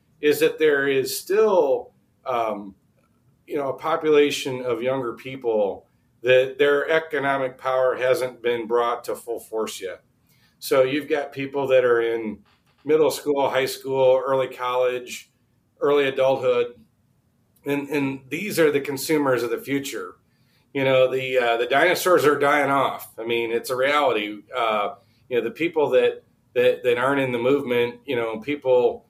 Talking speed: 160 wpm